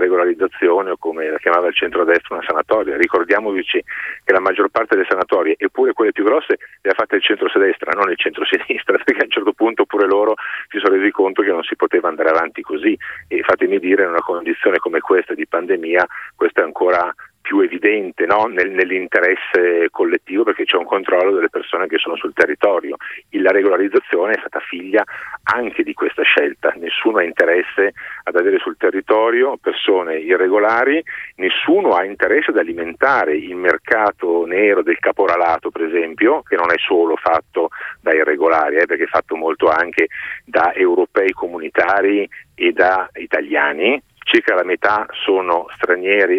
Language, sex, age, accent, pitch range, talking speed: Italian, male, 40-59, native, 360-430 Hz, 165 wpm